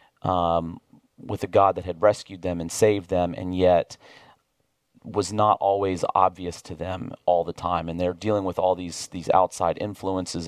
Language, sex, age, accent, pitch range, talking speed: English, male, 40-59, American, 90-110 Hz, 170 wpm